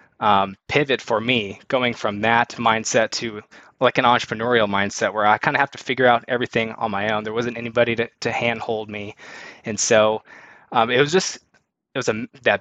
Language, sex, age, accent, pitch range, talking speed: English, male, 20-39, American, 110-130 Hz, 200 wpm